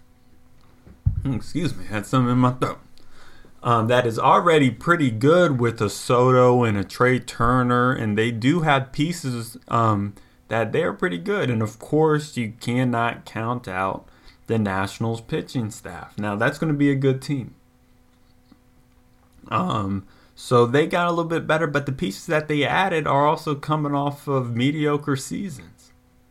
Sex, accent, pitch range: male, American, 115-140 Hz